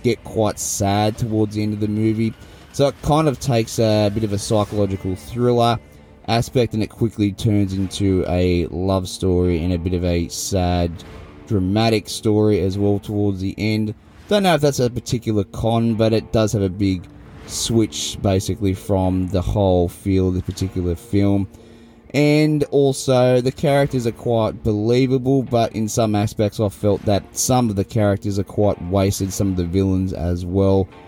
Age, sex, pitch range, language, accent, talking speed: 20-39, male, 95-115 Hz, English, Australian, 180 wpm